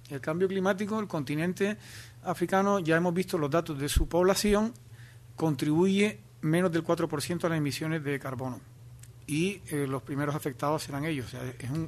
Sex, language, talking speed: male, Spanish, 150 wpm